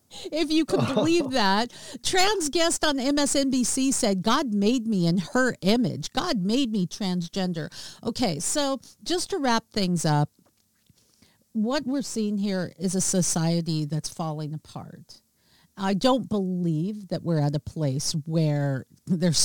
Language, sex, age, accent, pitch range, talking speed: English, female, 50-69, American, 165-225 Hz, 145 wpm